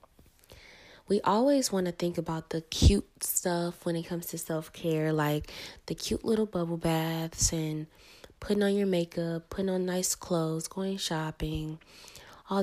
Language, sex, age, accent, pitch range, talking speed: English, female, 20-39, American, 160-185 Hz, 150 wpm